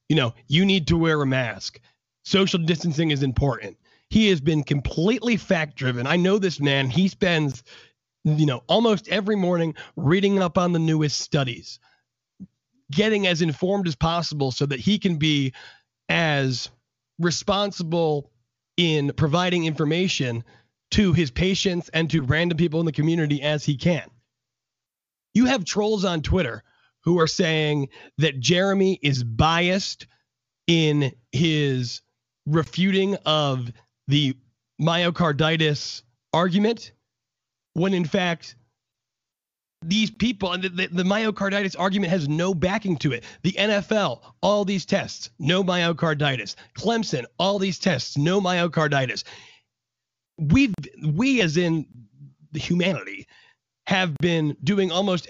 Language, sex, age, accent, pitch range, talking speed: English, male, 30-49, American, 140-190 Hz, 130 wpm